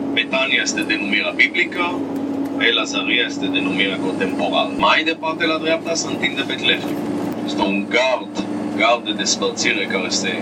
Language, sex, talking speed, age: Romanian, male, 140 wpm, 40-59